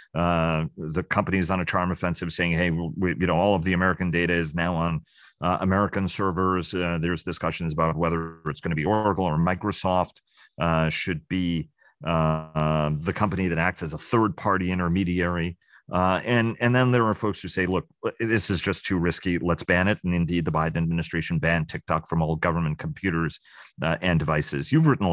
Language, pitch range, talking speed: English, 85-95 Hz, 200 wpm